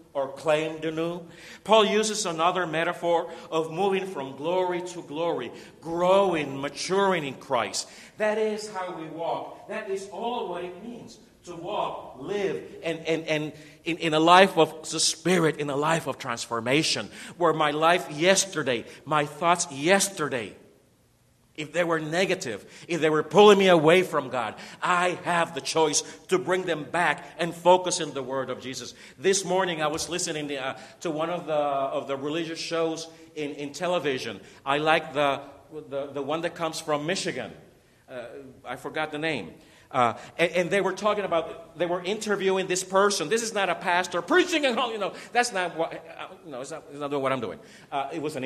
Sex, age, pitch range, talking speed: male, 50-69, 150-185 Hz, 190 wpm